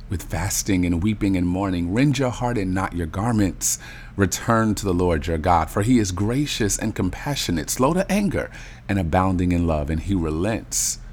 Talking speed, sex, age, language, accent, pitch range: 190 wpm, male, 40-59, English, American, 90-115 Hz